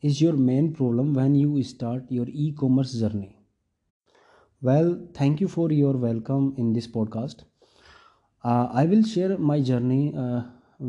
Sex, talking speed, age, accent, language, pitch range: male, 145 wpm, 30-49, native, Hindi, 120-140 Hz